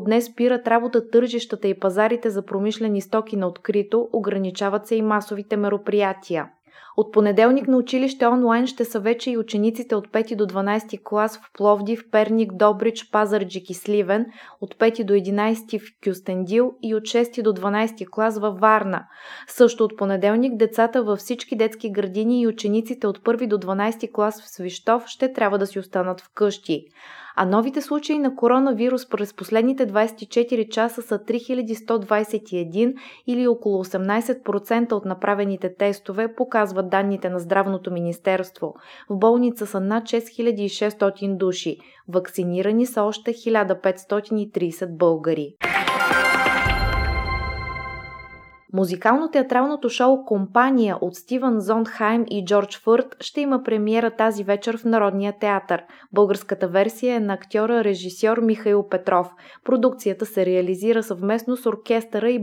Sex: female